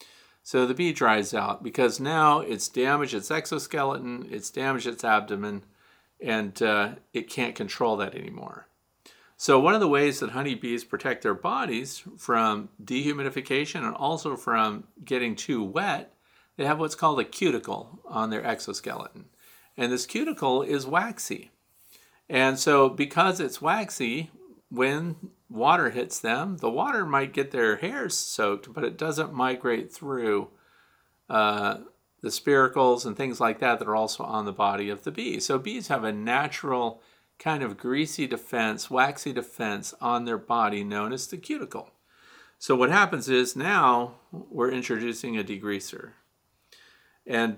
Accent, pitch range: American, 115-140 Hz